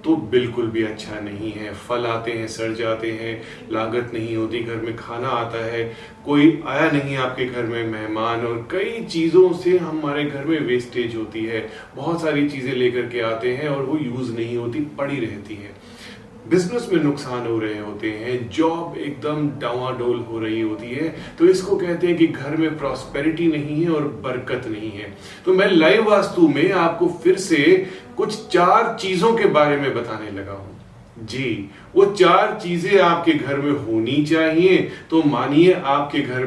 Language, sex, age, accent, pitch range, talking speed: Hindi, male, 30-49, native, 115-160 Hz, 180 wpm